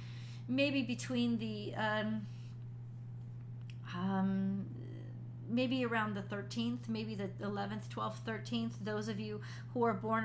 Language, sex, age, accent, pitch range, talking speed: English, female, 30-49, American, 105-130 Hz, 115 wpm